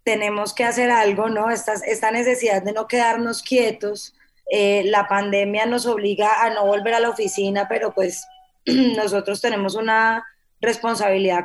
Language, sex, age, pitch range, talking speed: Spanish, female, 10-29, 200-240 Hz, 150 wpm